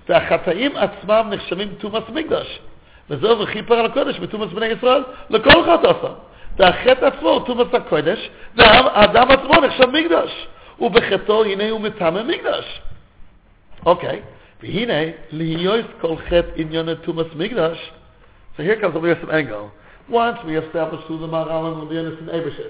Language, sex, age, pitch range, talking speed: English, male, 60-79, 165-220 Hz, 45 wpm